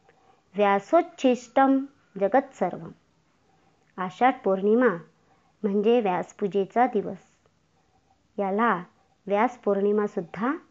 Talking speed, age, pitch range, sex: 55 wpm, 50-69, 195-245 Hz, male